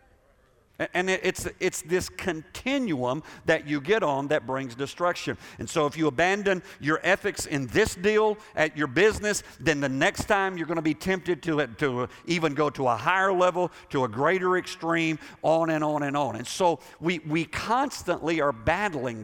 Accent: American